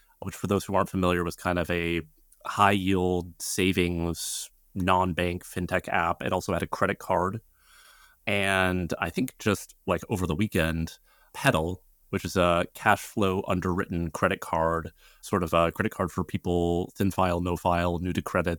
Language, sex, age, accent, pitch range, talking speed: English, male, 30-49, American, 85-95 Hz, 170 wpm